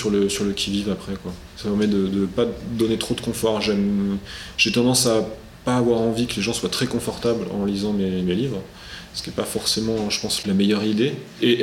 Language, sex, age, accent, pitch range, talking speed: French, male, 20-39, French, 100-120 Hz, 230 wpm